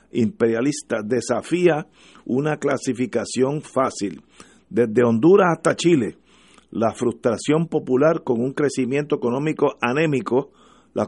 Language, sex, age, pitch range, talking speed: Spanish, male, 50-69, 115-145 Hz, 95 wpm